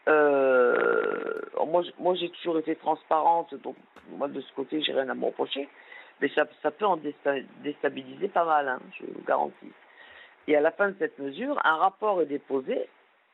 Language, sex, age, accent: French, female, 50-69, French